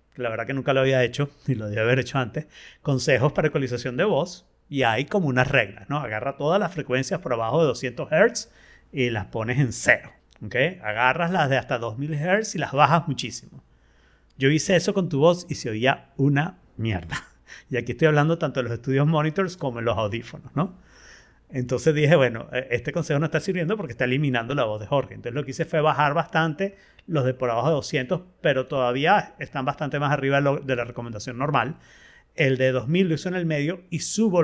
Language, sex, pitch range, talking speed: Spanish, male, 125-160 Hz, 215 wpm